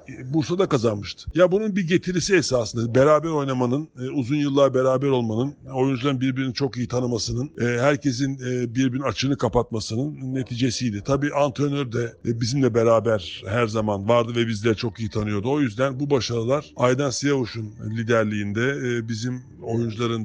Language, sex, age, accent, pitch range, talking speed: Turkish, male, 60-79, native, 120-145 Hz, 135 wpm